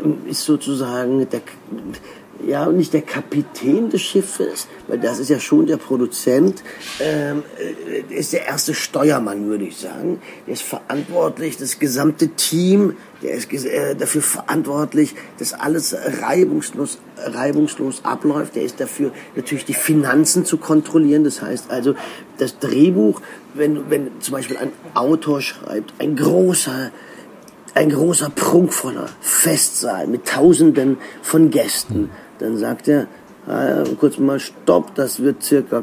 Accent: German